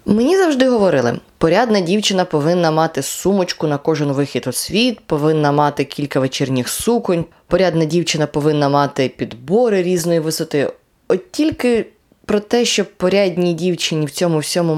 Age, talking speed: 20-39, 140 wpm